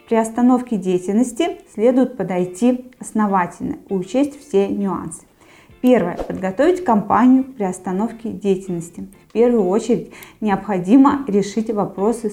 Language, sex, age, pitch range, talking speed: Russian, female, 20-39, 195-255 Hz, 100 wpm